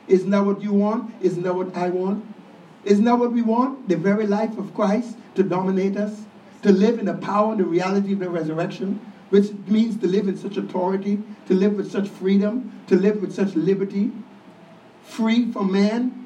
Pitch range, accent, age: 170-215 Hz, American, 60-79